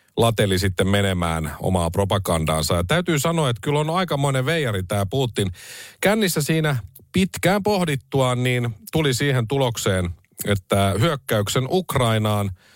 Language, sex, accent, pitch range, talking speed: Finnish, male, native, 95-130 Hz, 120 wpm